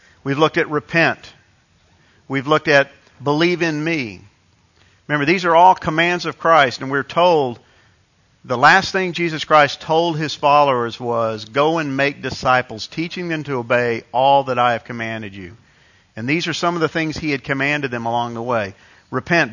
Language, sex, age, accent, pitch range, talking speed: English, male, 50-69, American, 110-155 Hz, 180 wpm